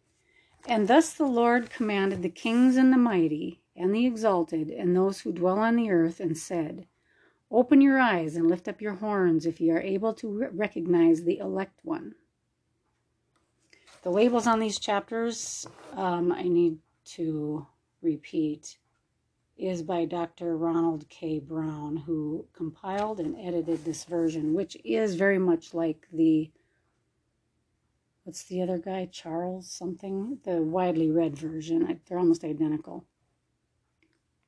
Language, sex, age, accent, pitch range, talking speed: English, female, 40-59, American, 165-210 Hz, 140 wpm